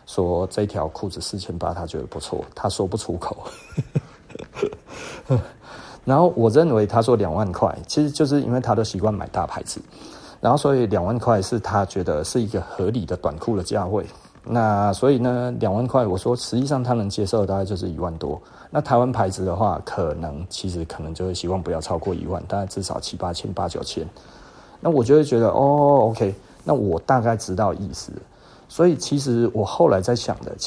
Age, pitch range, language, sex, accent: 30-49, 95-120 Hz, Chinese, male, native